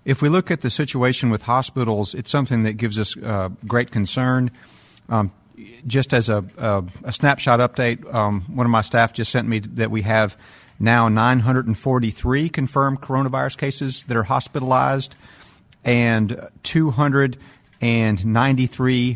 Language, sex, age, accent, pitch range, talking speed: English, male, 40-59, American, 110-135 Hz, 140 wpm